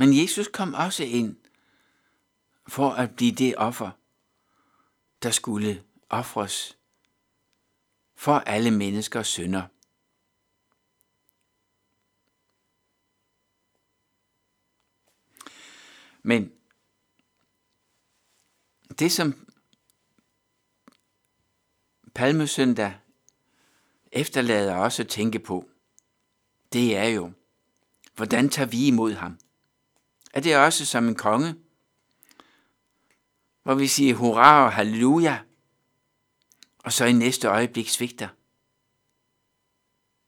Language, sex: Danish, male